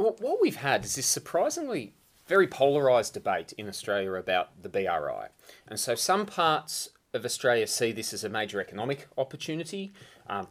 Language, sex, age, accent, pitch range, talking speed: English, male, 30-49, Australian, 100-150 Hz, 160 wpm